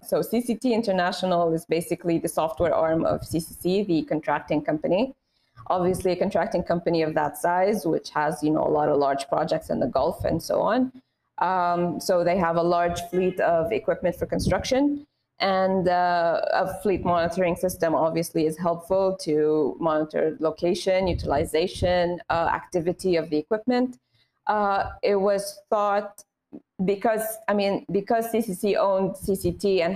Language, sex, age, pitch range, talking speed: English, female, 20-39, 165-200 Hz, 150 wpm